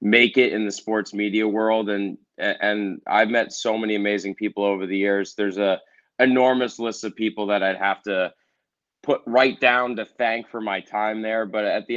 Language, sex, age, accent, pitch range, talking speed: English, male, 30-49, American, 100-115 Hz, 200 wpm